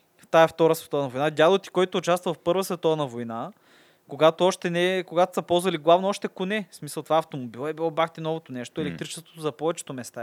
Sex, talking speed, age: male, 210 wpm, 20-39